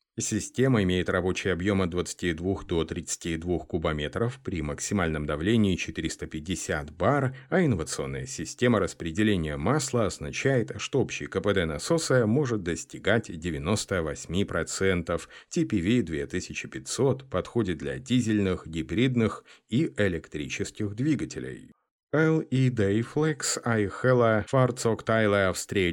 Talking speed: 95 wpm